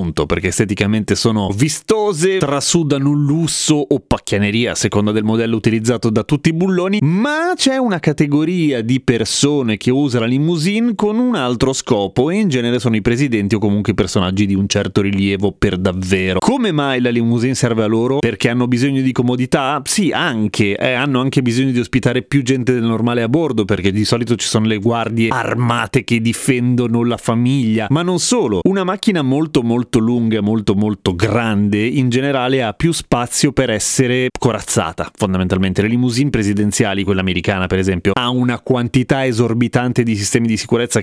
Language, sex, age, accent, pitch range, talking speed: Italian, male, 30-49, native, 110-140 Hz, 175 wpm